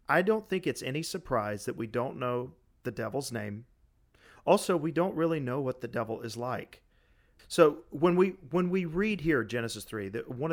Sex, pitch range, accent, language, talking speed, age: male, 115-155 Hz, American, English, 195 wpm, 40-59